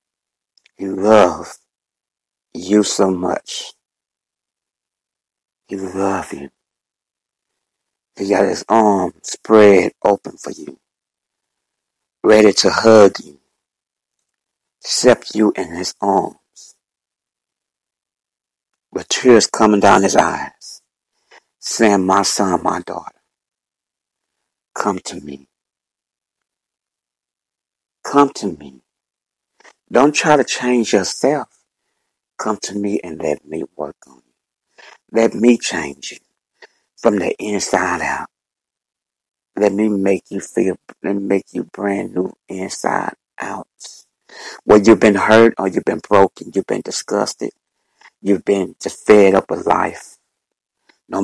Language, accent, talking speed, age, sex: English, American, 110 wpm, 60-79, male